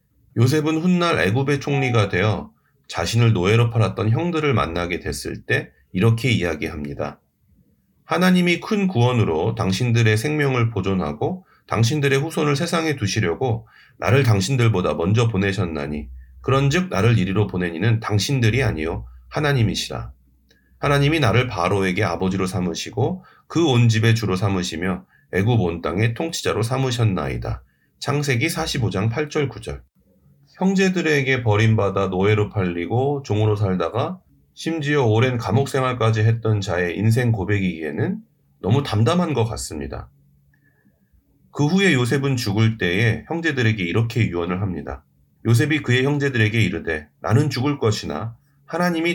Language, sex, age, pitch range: Korean, male, 40-59, 95-135 Hz